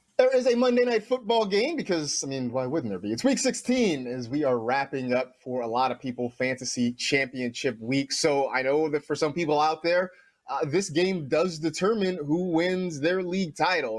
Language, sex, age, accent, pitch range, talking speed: English, male, 30-49, American, 120-160 Hz, 205 wpm